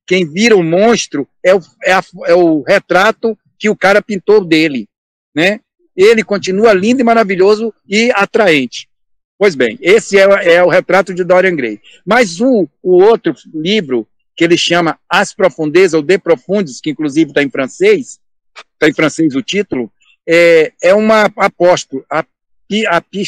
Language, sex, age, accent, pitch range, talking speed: Portuguese, male, 60-79, Brazilian, 165-215 Hz, 155 wpm